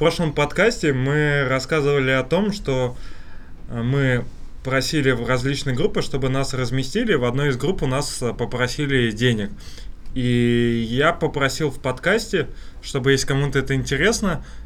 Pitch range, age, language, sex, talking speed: 120-155 Hz, 20-39, Russian, male, 140 wpm